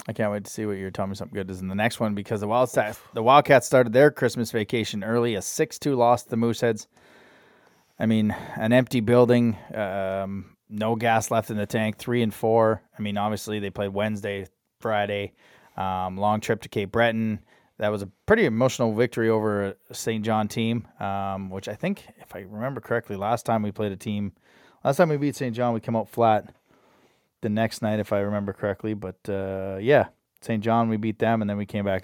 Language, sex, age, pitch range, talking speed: English, male, 20-39, 100-115 Hz, 215 wpm